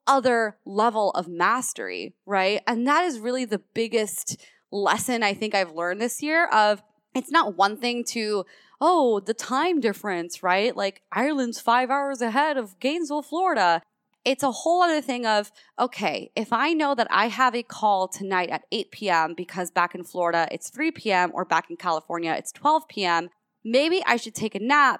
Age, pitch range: 20-39, 195-260 Hz